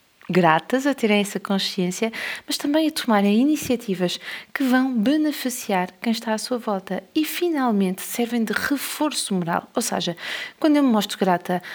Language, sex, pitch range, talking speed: Portuguese, female, 185-230 Hz, 160 wpm